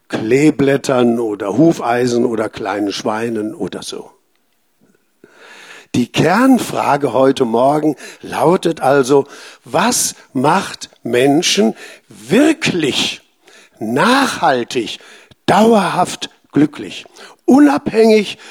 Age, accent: 60-79, German